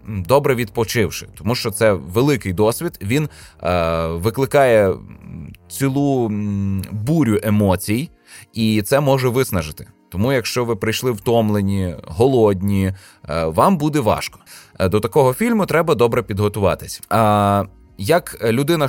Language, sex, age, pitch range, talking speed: Ukrainian, male, 20-39, 100-135 Hz, 115 wpm